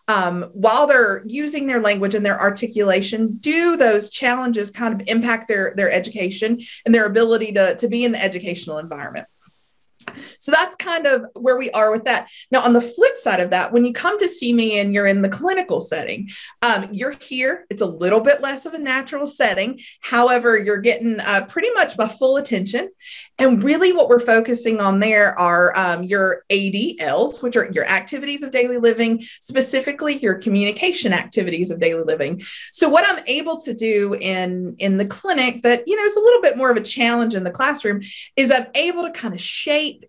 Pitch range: 205-275 Hz